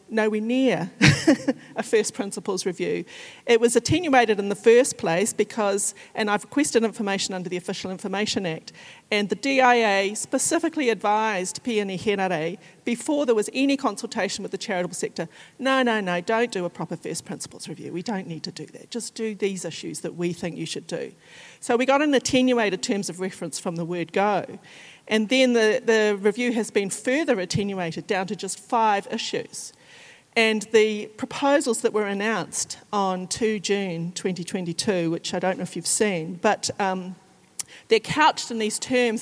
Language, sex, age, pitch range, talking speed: English, female, 40-59, 190-235 Hz, 175 wpm